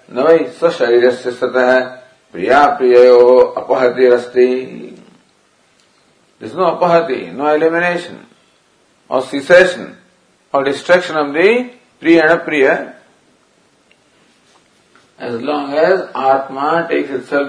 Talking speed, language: 60 wpm, English